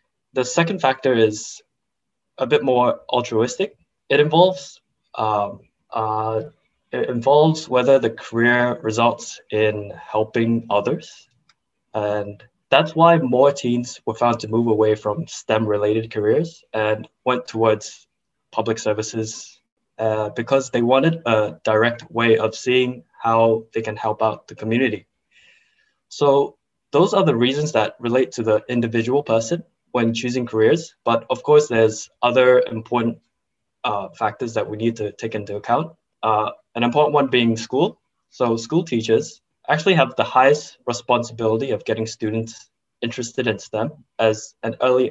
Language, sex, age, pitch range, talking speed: English, male, 10-29, 110-135 Hz, 145 wpm